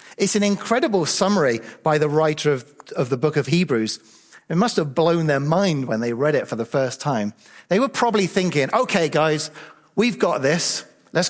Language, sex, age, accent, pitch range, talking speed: English, male, 40-59, British, 140-190 Hz, 195 wpm